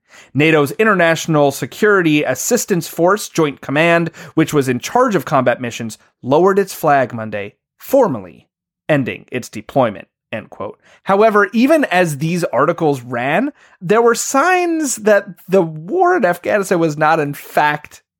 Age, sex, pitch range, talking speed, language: 30-49, male, 140-205 Hz, 140 wpm, English